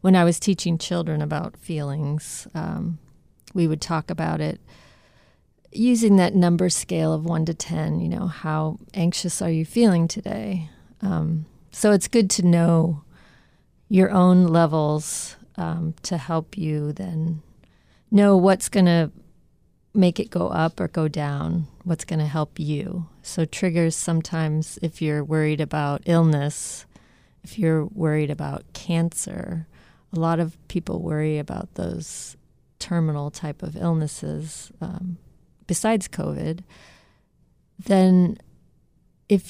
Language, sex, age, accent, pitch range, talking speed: English, female, 40-59, American, 155-185 Hz, 135 wpm